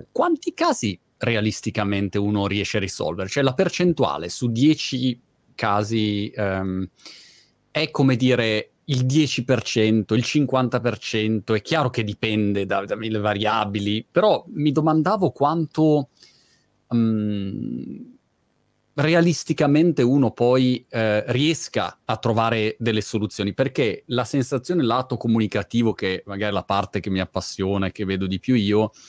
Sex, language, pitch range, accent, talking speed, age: male, Italian, 100-130 Hz, native, 125 wpm, 30-49